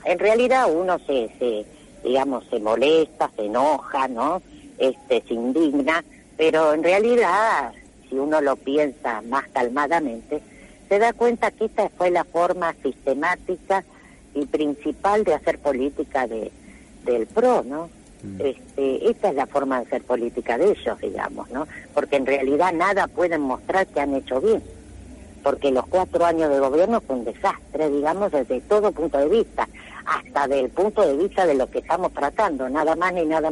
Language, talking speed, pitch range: Spanish, 165 wpm, 140-200 Hz